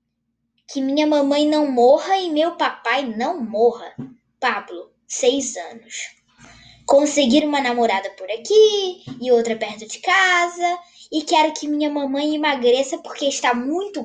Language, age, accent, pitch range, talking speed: Portuguese, 10-29, Brazilian, 235-345 Hz, 135 wpm